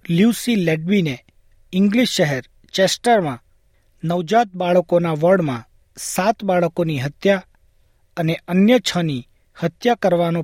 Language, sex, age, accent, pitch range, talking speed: Gujarati, male, 40-59, native, 135-190 Hz, 90 wpm